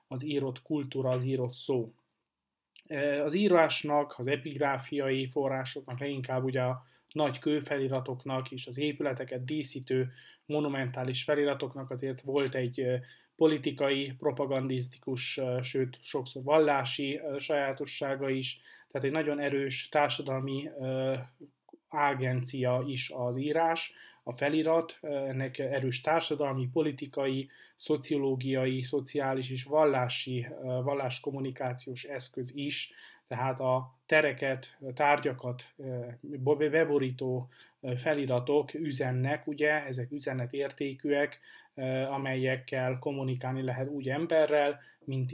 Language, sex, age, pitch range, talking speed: Hungarian, male, 20-39, 130-145 Hz, 90 wpm